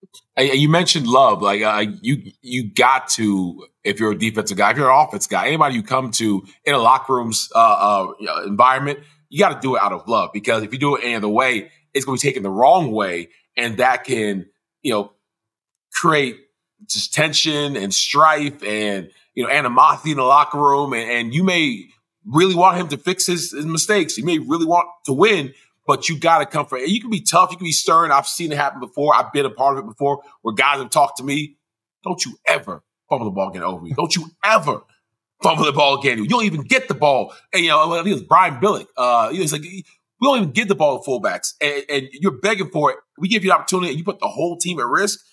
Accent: American